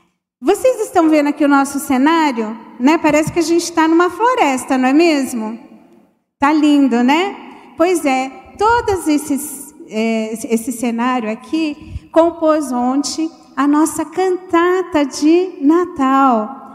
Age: 40-59